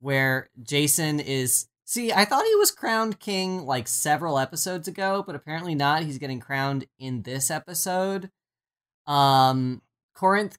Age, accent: 10-29, American